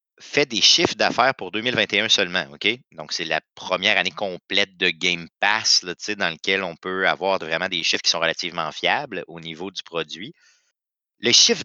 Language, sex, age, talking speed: French, male, 30-49, 190 wpm